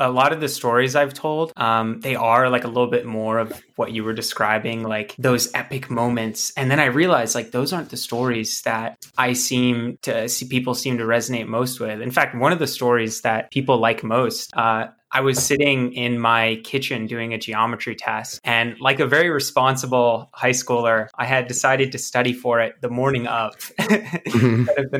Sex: male